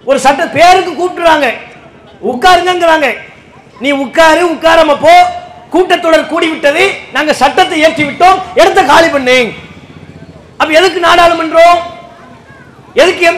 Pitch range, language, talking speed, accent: 285-345 Hz, English, 120 wpm, Indian